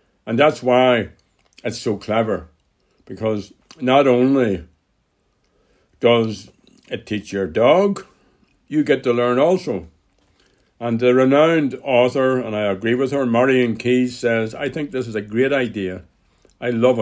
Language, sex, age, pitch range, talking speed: English, male, 60-79, 105-125 Hz, 140 wpm